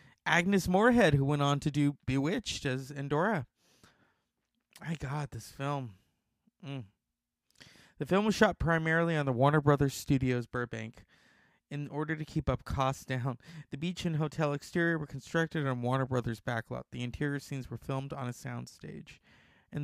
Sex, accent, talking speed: male, American, 160 wpm